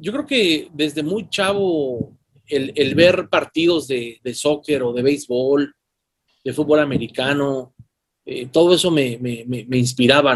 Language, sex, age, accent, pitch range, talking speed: Spanish, male, 30-49, Mexican, 135-165 Hz, 155 wpm